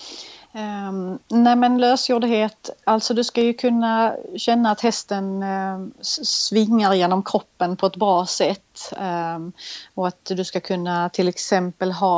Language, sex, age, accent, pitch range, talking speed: Swedish, female, 30-49, native, 175-200 Hz, 145 wpm